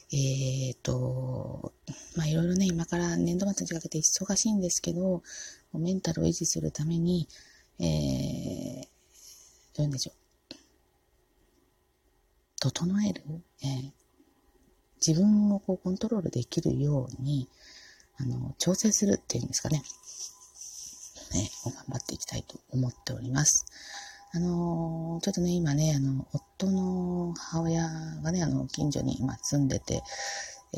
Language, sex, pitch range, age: Japanese, female, 120-175 Hz, 30-49